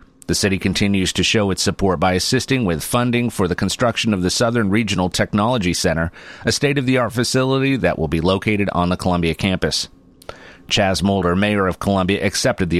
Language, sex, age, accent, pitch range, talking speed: English, male, 30-49, American, 90-120 Hz, 180 wpm